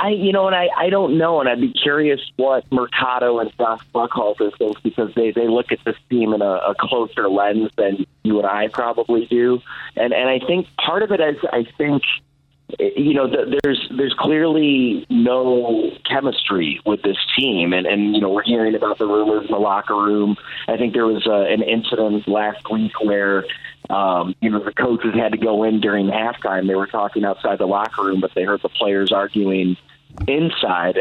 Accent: American